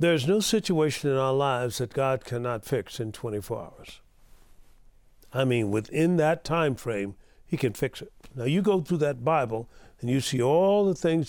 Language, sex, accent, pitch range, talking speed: English, male, American, 135-190 Hz, 185 wpm